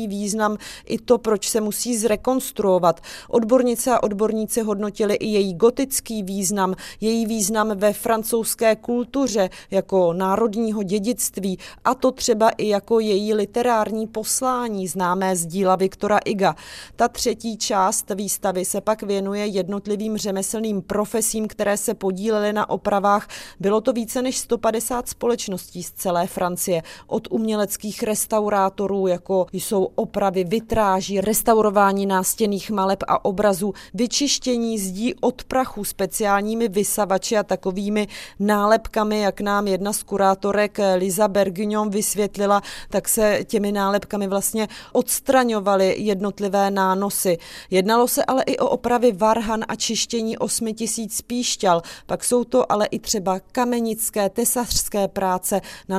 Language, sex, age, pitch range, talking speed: Czech, female, 30-49, 195-225 Hz, 130 wpm